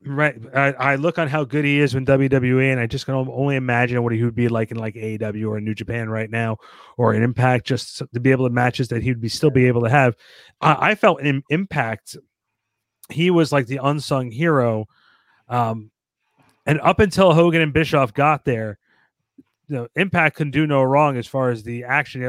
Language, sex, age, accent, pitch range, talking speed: English, male, 30-49, American, 125-155 Hz, 210 wpm